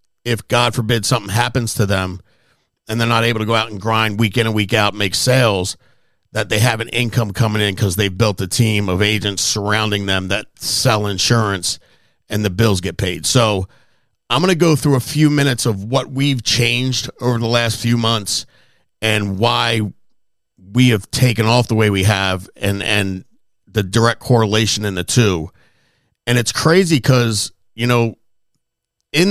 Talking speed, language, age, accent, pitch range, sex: 185 wpm, English, 50-69, American, 105-125 Hz, male